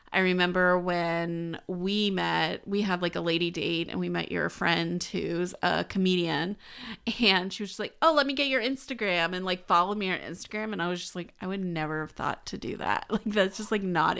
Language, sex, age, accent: English, female, 30-49, American